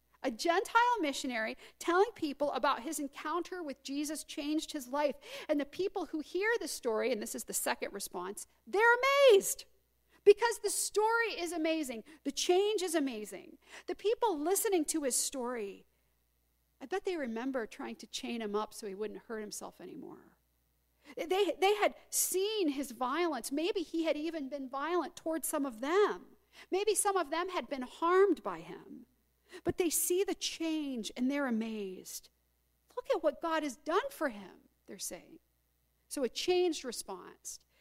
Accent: American